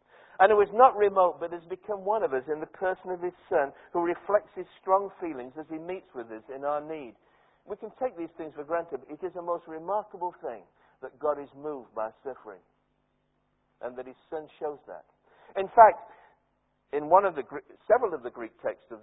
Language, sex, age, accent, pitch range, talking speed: English, male, 60-79, British, 140-185 Hz, 215 wpm